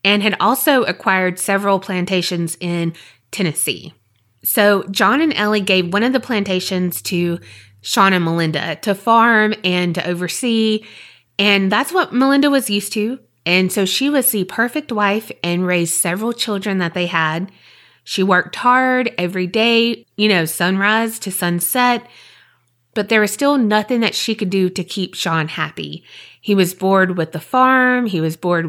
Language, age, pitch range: English, 20-39, 180-225 Hz